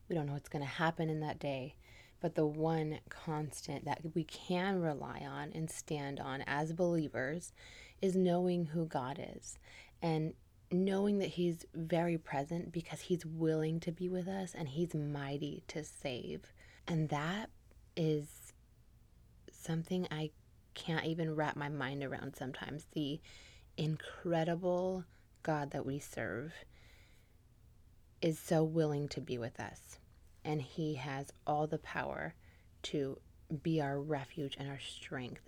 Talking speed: 145 wpm